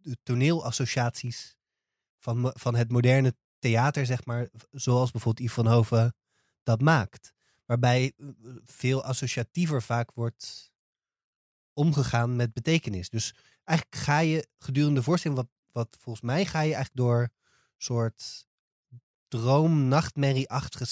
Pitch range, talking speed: 120-145 Hz, 120 wpm